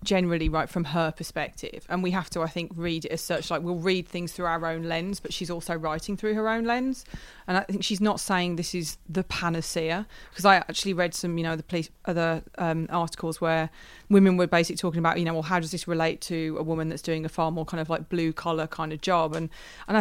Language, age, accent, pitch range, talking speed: English, 30-49, British, 165-185 Hz, 250 wpm